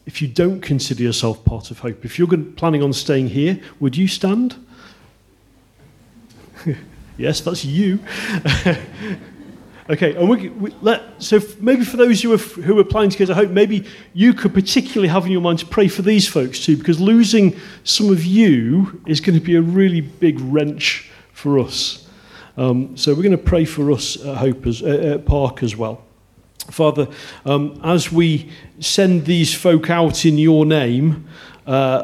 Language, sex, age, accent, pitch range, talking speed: English, male, 40-59, British, 135-175 Hz, 180 wpm